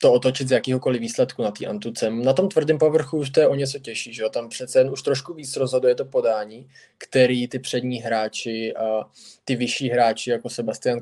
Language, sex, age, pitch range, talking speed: Czech, male, 20-39, 115-135 Hz, 210 wpm